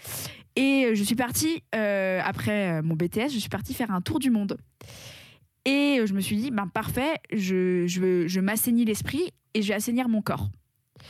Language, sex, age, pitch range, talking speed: French, female, 20-39, 185-230 Hz, 185 wpm